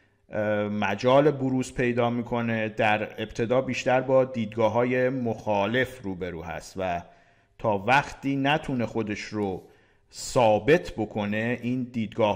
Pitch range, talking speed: 110-140 Hz, 110 wpm